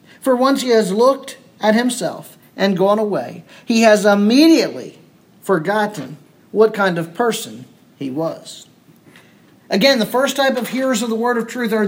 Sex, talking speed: male, 160 wpm